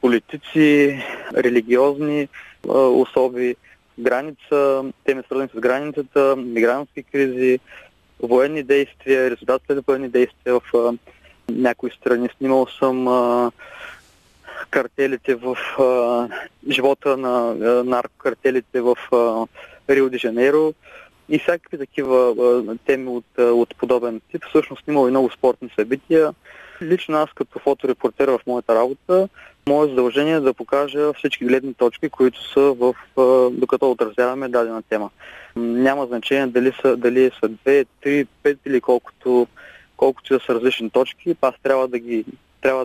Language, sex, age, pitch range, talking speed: Bulgarian, male, 20-39, 120-140 Hz, 115 wpm